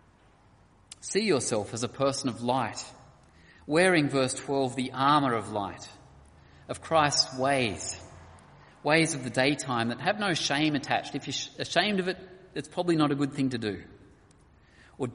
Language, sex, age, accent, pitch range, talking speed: English, male, 30-49, Australian, 105-145 Hz, 160 wpm